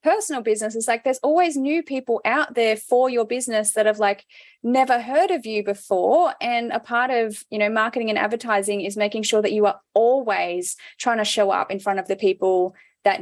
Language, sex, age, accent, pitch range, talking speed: English, female, 20-39, Australian, 185-240 Hz, 215 wpm